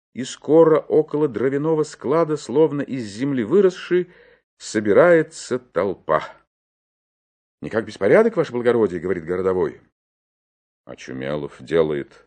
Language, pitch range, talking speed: Russian, 110-165 Hz, 100 wpm